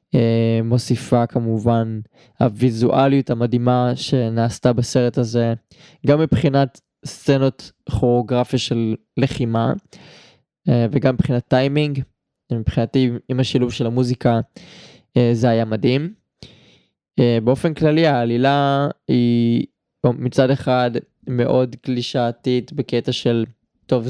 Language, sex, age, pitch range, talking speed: Hebrew, male, 20-39, 120-135 Hz, 95 wpm